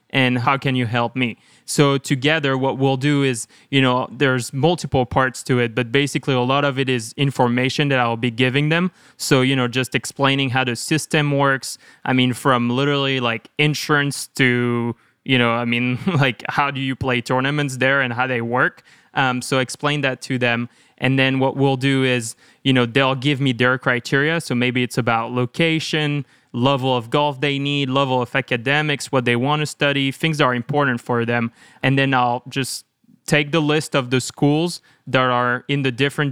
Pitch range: 125-145 Hz